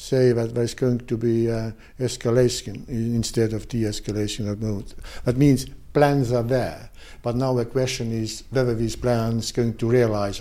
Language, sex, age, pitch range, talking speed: English, male, 60-79, 110-130 Hz, 175 wpm